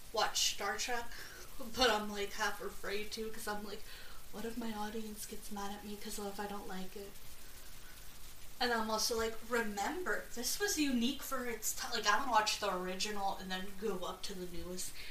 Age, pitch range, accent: 10-29, 210-260 Hz, American